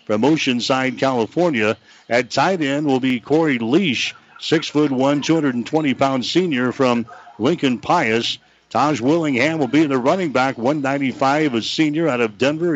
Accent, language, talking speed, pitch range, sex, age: American, English, 135 wpm, 125-150 Hz, male, 60-79